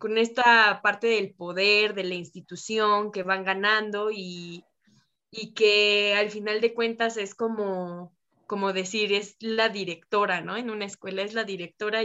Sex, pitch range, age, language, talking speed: female, 195-235 Hz, 20-39, Spanish, 160 wpm